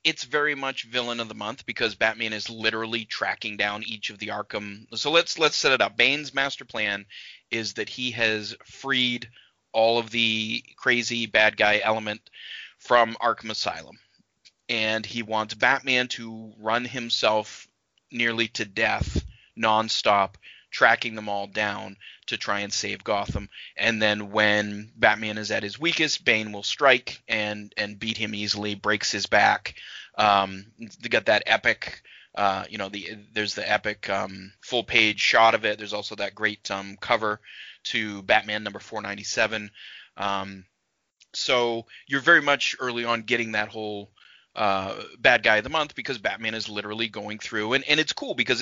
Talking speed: 170 wpm